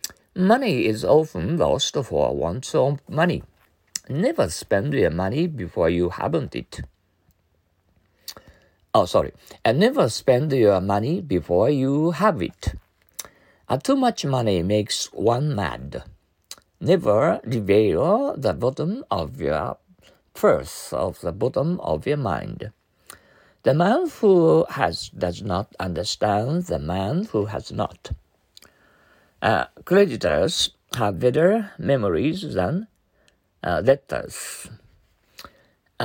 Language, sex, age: Japanese, male, 60-79